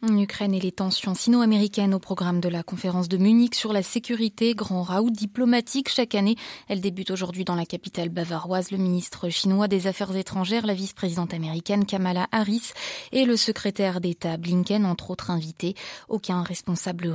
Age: 20-39